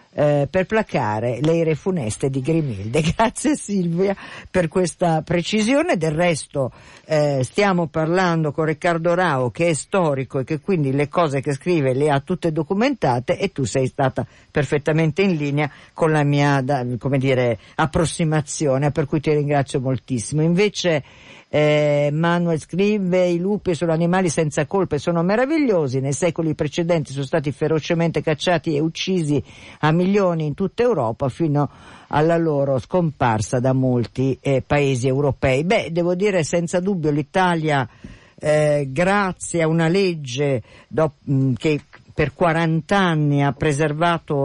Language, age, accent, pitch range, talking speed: Italian, 50-69, native, 135-175 Hz, 140 wpm